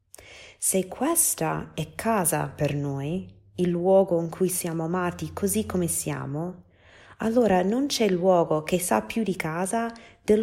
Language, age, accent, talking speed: Italian, 20-39, native, 145 wpm